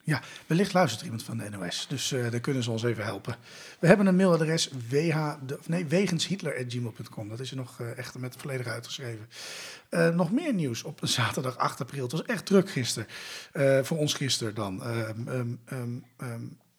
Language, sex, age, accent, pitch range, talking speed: Dutch, male, 40-59, Dutch, 125-160 Hz, 190 wpm